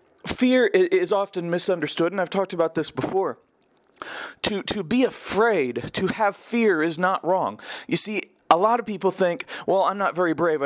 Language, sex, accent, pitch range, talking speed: English, male, American, 170-215 Hz, 180 wpm